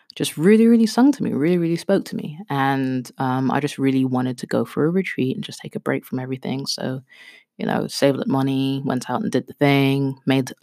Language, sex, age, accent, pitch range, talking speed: English, female, 20-39, British, 125-165 Hz, 235 wpm